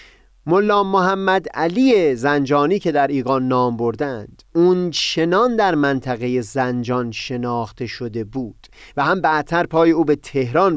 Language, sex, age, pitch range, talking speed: Persian, male, 30-49, 125-170 Hz, 135 wpm